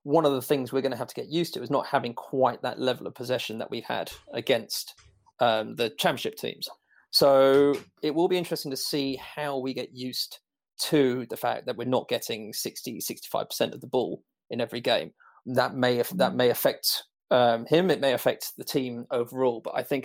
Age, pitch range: 30-49, 125-150 Hz